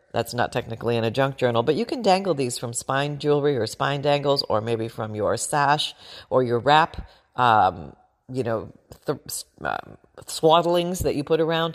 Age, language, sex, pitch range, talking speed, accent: 40-59, English, female, 145-215 Hz, 185 wpm, American